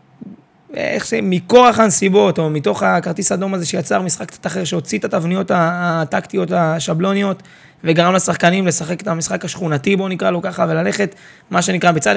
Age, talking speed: 20-39, 160 wpm